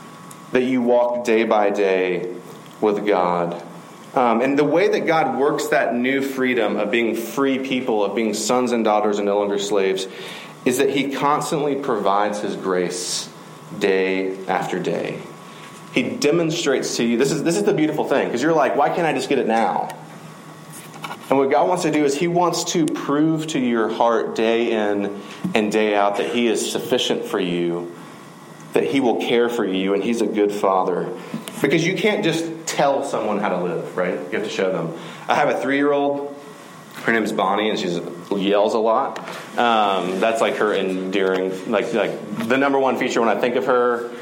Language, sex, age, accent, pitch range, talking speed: English, male, 30-49, American, 100-135 Hz, 190 wpm